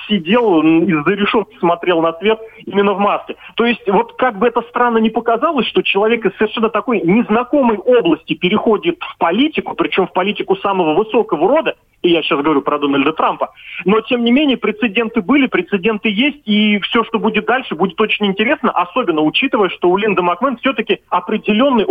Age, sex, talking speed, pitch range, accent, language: 30-49, male, 180 wpm, 175-240 Hz, native, Russian